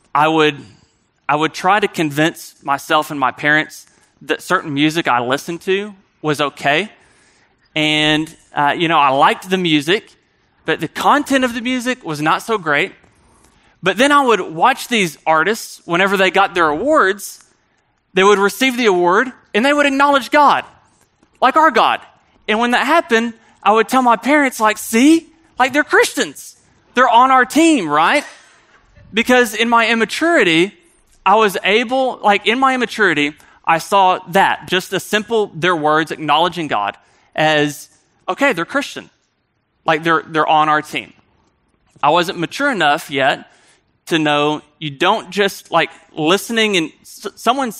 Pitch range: 155-240 Hz